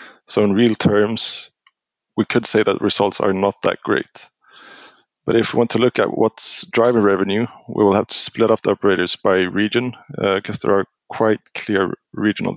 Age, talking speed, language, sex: 20-39, 190 wpm, English, male